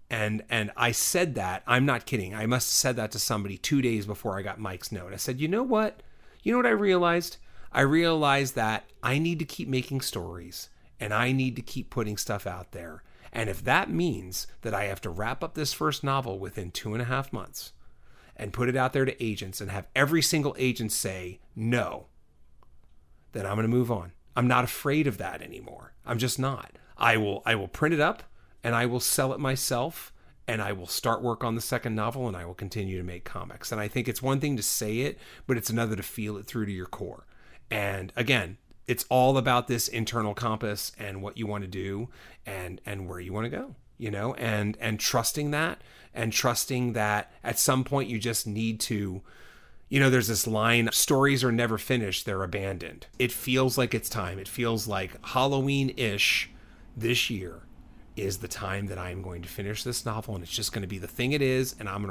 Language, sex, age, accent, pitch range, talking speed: English, male, 40-59, American, 100-130 Hz, 220 wpm